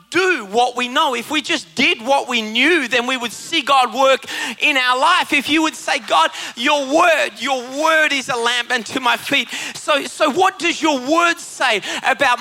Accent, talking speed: Australian, 210 wpm